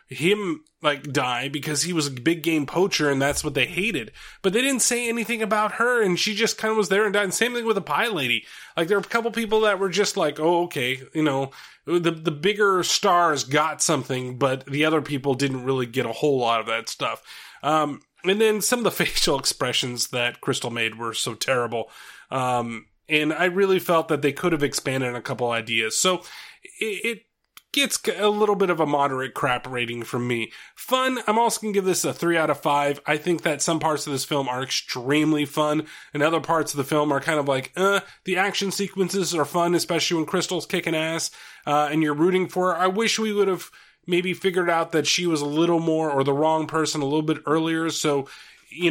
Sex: male